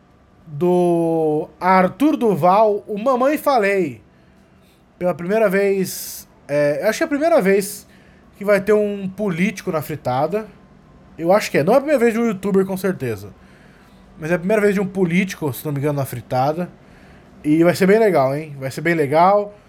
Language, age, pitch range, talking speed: Portuguese, 20-39, 155-200 Hz, 190 wpm